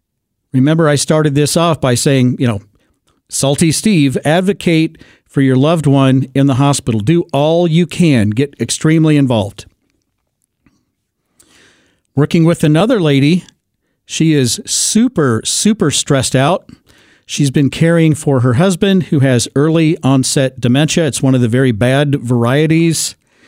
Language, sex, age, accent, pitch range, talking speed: English, male, 50-69, American, 135-175 Hz, 140 wpm